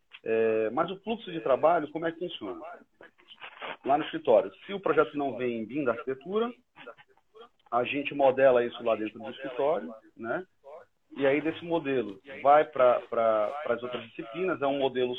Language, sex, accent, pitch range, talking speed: Portuguese, male, Brazilian, 120-170 Hz, 165 wpm